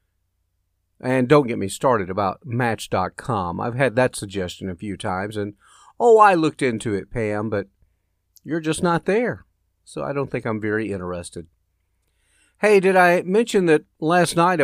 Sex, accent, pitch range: male, American, 105-170 Hz